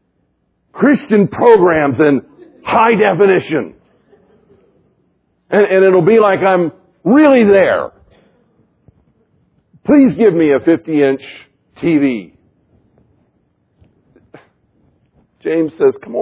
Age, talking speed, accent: 50-69, 80 wpm, American